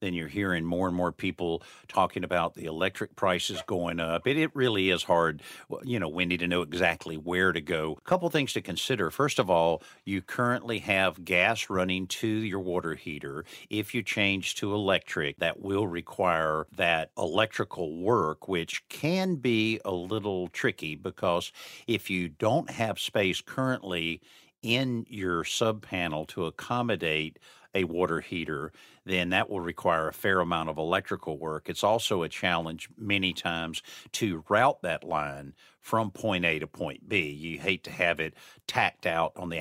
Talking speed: 175 wpm